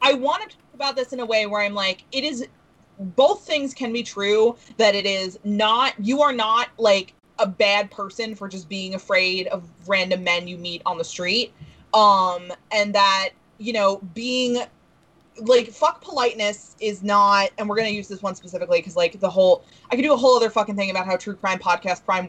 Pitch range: 185-235 Hz